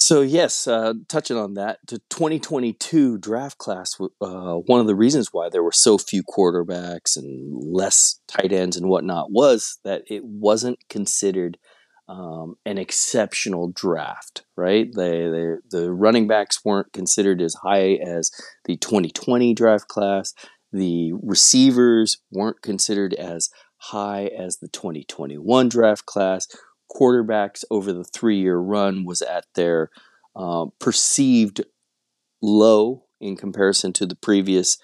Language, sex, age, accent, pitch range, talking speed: English, male, 30-49, American, 90-110 Hz, 130 wpm